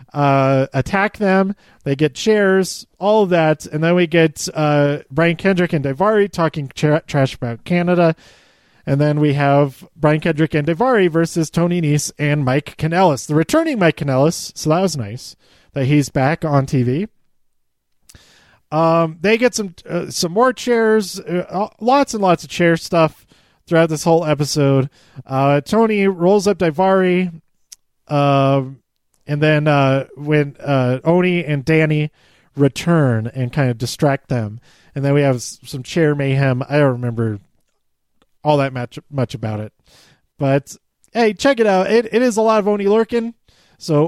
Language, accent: English, American